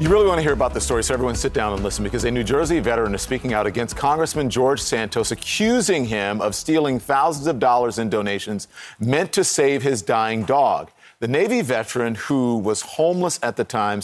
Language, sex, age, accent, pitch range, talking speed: English, male, 40-59, American, 110-150 Hz, 215 wpm